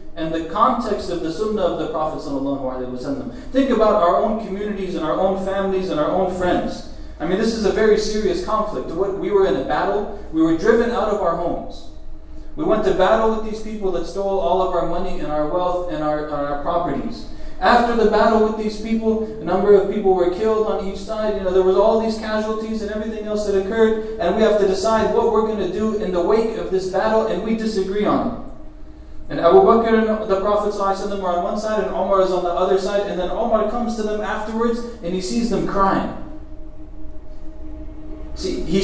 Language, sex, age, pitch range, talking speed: English, male, 30-49, 180-220 Hz, 225 wpm